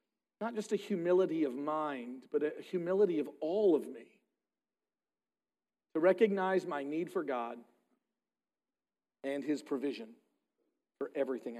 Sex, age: male, 40-59